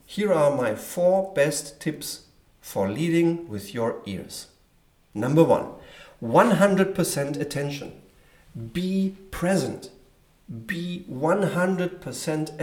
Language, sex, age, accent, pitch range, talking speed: German, male, 50-69, German, 145-190 Hz, 90 wpm